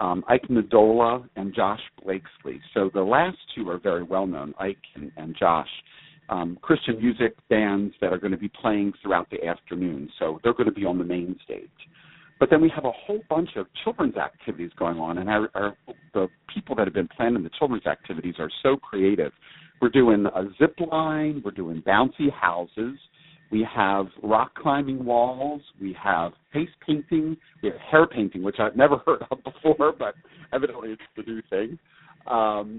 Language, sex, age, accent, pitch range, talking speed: English, male, 50-69, American, 100-155 Hz, 180 wpm